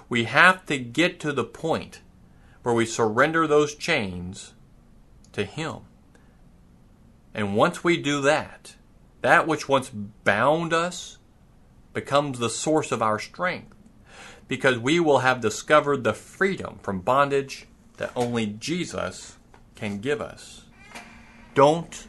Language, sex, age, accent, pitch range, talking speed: English, male, 40-59, American, 105-150 Hz, 125 wpm